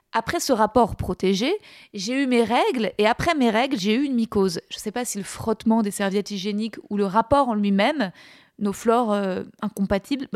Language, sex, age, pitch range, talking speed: French, female, 20-39, 205-255 Hz, 205 wpm